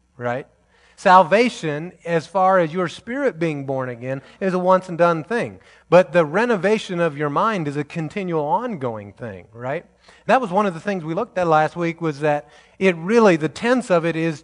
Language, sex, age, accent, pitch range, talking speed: English, male, 30-49, American, 140-180 Hz, 200 wpm